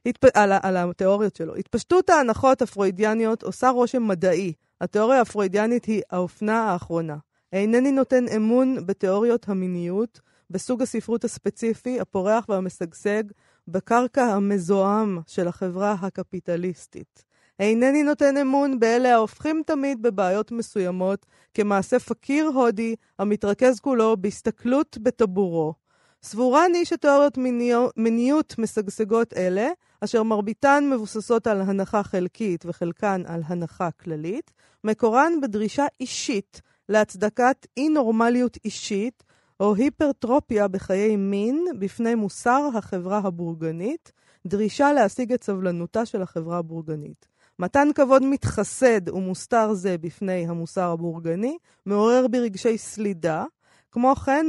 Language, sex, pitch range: Hebrew, female, 190-250 Hz